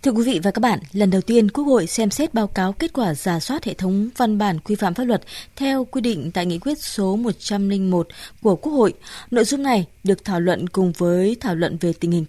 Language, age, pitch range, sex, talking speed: Vietnamese, 20-39, 190-240 Hz, female, 250 wpm